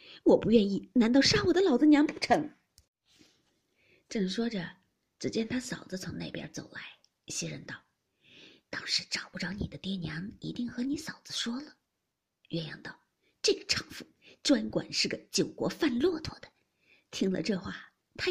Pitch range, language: 210-300 Hz, Chinese